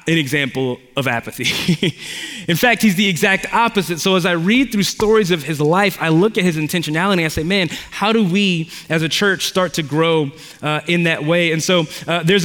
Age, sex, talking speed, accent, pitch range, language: 20-39, male, 215 wpm, American, 150-180 Hz, English